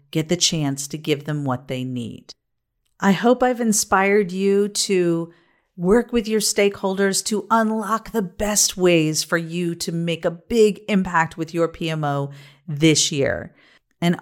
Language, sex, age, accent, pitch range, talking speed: English, female, 40-59, American, 155-205 Hz, 155 wpm